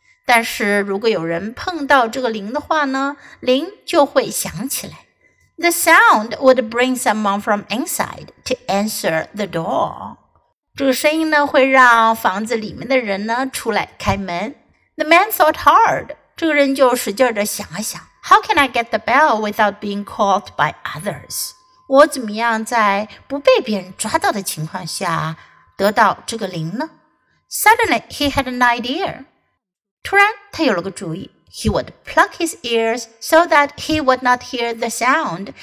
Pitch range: 205-295 Hz